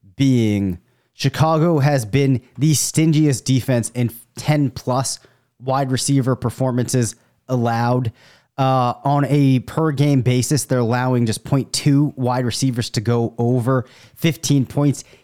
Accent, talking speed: American, 120 wpm